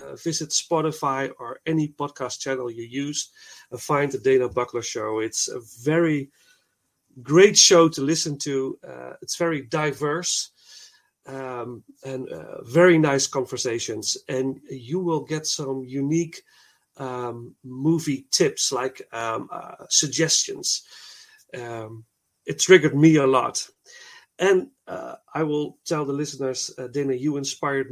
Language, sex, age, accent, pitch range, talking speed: Dutch, male, 40-59, Dutch, 125-165 Hz, 135 wpm